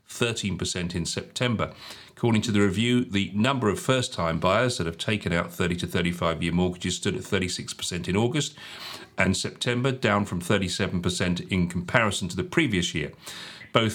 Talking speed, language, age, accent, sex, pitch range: 160 wpm, English, 40-59, British, male, 90-115 Hz